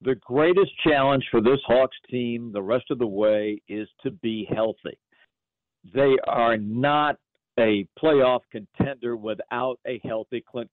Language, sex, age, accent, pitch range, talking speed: English, male, 60-79, American, 115-150 Hz, 145 wpm